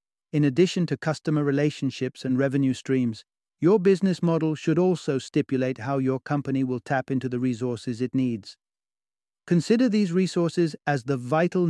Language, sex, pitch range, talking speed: English, male, 135-160 Hz, 155 wpm